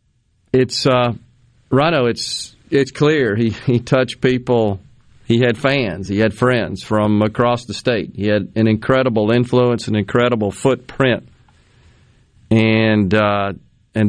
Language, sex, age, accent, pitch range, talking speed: English, male, 40-59, American, 105-125 Hz, 130 wpm